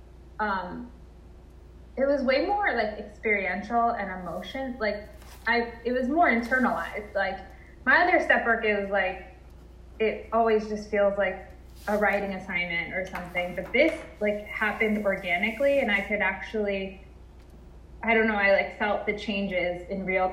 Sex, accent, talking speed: female, American, 150 wpm